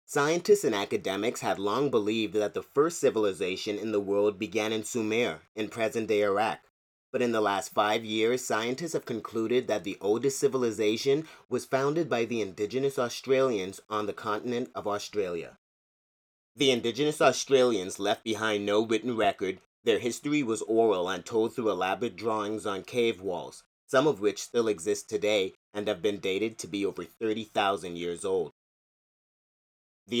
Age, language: 30-49, English